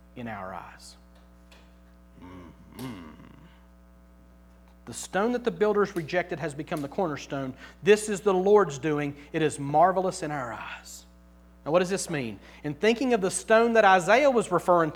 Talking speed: 160 wpm